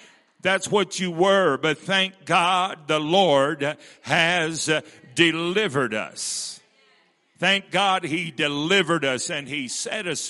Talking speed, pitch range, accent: 120 wpm, 120-165 Hz, American